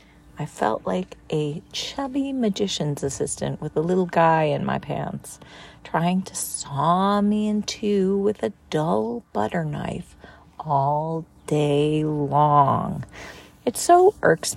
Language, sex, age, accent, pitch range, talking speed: English, female, 40-59, American, 150-200 Hz, 130 wpm